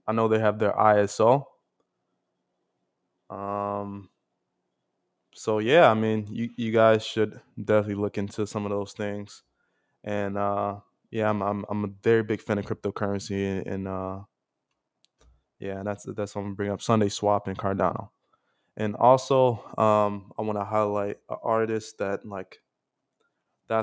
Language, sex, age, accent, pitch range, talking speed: English, male, 20-39, American, 100-110 Hz, 155 wpm